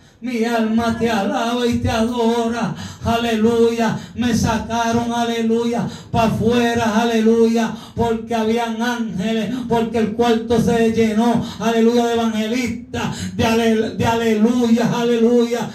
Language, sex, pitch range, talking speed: Spanish, male, 230-250 Hz, 115 wpm